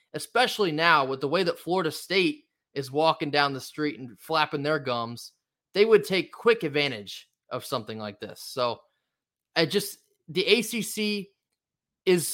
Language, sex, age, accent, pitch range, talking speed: English, male, 20-39, American, 130-180 Hz, 155 wpm